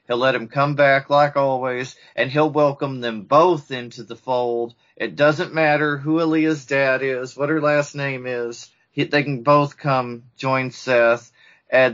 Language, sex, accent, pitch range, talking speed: English, male, American, 125-150 Hz, 170 wpm